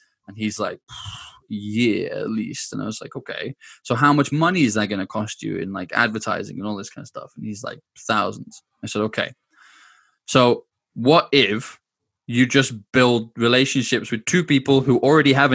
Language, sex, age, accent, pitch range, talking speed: English, male, 20-39, British, 110-135 Hz, 195 wpm